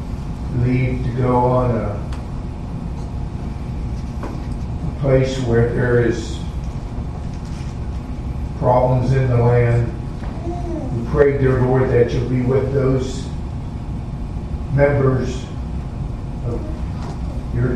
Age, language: 50-69, English